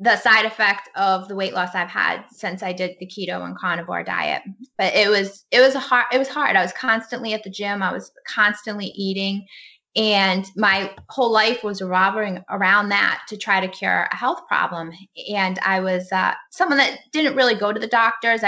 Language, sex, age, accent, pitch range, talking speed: English, female, 10-29, American, 190-220 Hz, 210 wpm